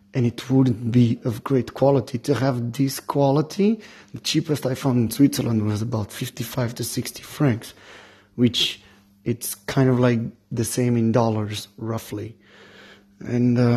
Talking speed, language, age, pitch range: 150 wpm, English, 30-49, 115-130 Hz